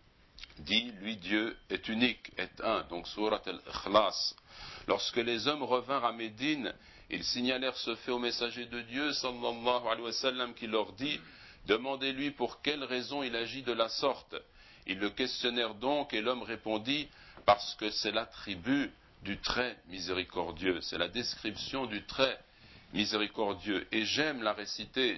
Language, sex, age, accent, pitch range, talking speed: French, male, 60-79, French, 105-125 Hz, 150 wpm